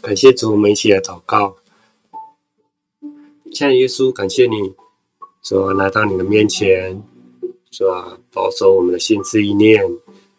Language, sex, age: Chinese, male, 20-39